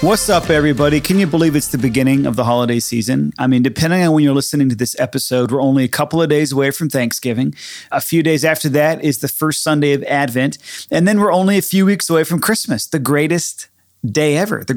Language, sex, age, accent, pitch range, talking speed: English, male, 30-49, American, 130-155 Hz, 235 wpm